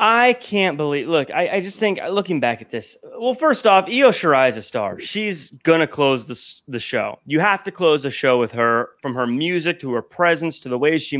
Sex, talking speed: male, 240 wpm